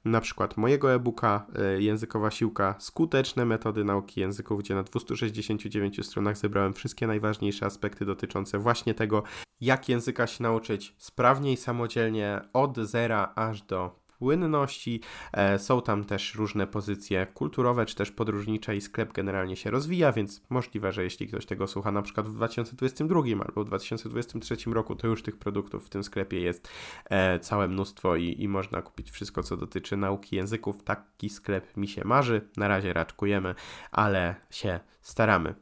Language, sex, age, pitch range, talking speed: Polish, male, 20-39, 100-115 Hz, 155 wpm